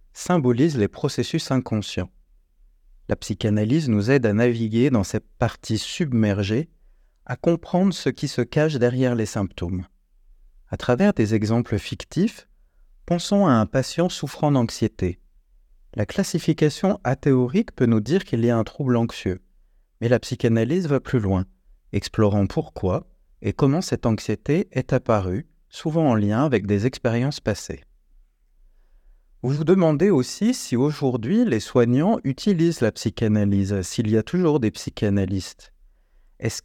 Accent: French